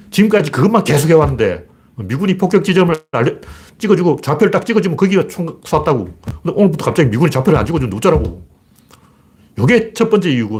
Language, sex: Korean, male